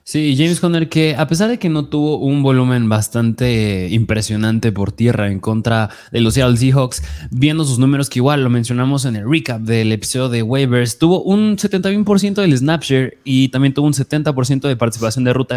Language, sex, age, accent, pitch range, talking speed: Spanish, male, 20-39, Mexican, 115-145 Hz, 195 wpm